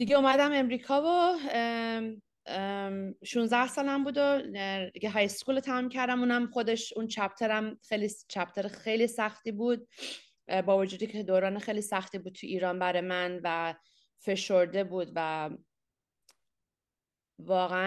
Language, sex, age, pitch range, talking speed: Persian, female, 30-49, 180-225 Hz, 130 wpm